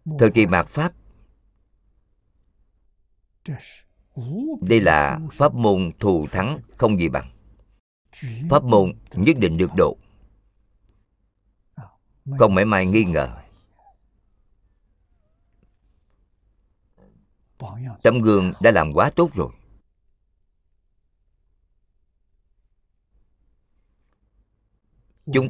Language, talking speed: Vietnamese, 75 wpm